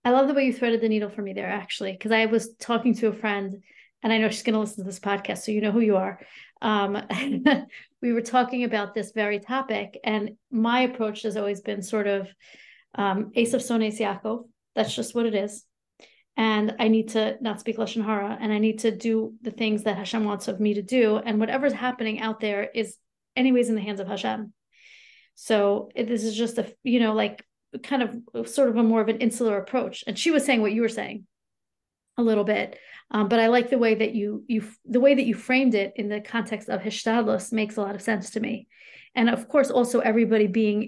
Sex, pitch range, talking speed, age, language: female, 210-235 Hz, 230 wpm, 40-59, English